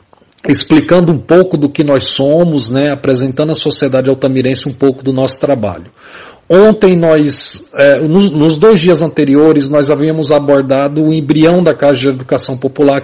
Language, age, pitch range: Portuguese, 40-59, 140-160 Hz